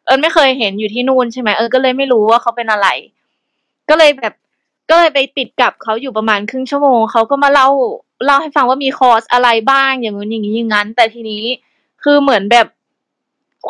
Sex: female